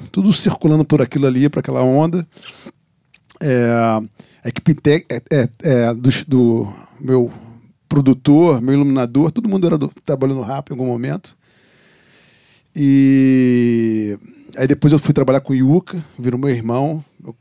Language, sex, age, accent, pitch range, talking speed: Portuguese, male, 40-59, Brazilian, 125-145 Hz, 145 wpm